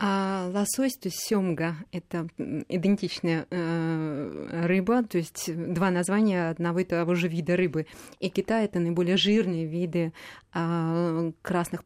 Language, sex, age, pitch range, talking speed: Russian, female, 20-39, 165-190 Hz, 130 wpm